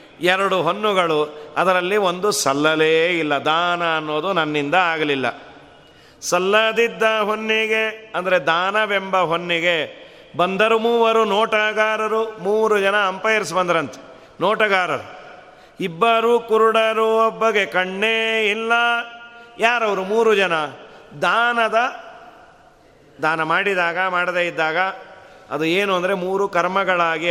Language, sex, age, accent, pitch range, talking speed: Kannada, male, 40-59, native, 160-215 Hz, 90 wpm